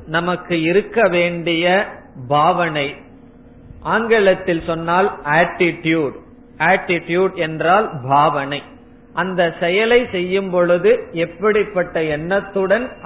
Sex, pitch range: male, 165-205 Hz